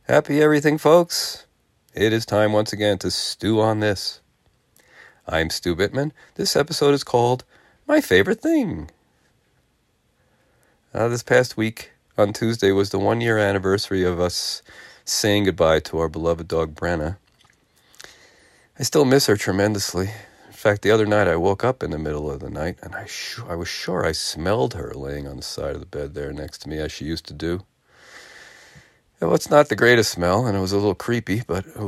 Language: English